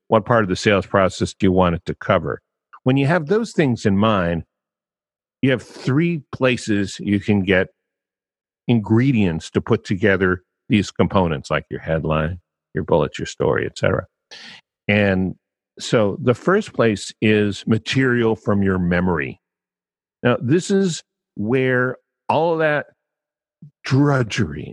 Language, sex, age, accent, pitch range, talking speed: English, male, 50-69, American, 90-115 Hz, 145 wpm